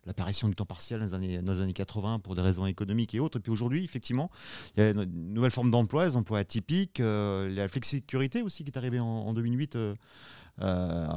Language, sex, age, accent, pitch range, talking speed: French, male, 30-49, French, 105-135 Hz, 225 wpm